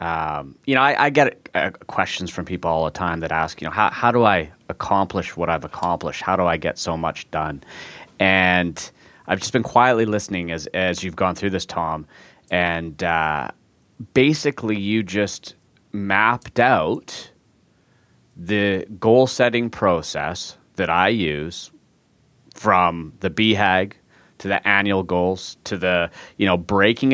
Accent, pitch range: American, 90-110 Hz